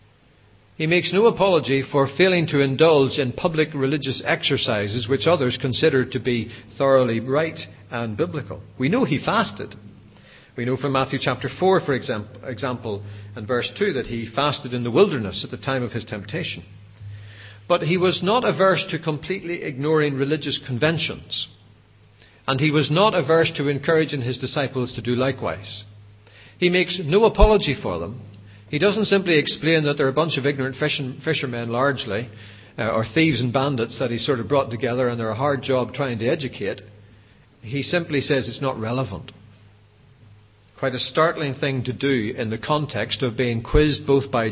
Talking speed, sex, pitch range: 170 wpm, male, 110-145 Hz